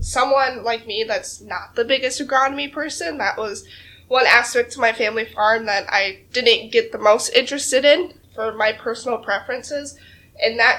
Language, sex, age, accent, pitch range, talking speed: English, female, 20-39, American, 215-275 Hz, 170 wpm